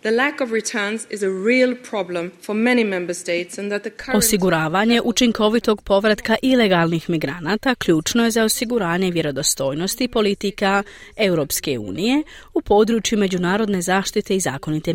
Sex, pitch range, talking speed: female, 170-230 Hz, 75 wpm